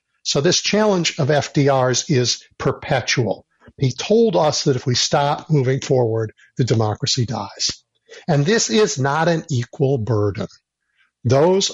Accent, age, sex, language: American, 60-79, male, English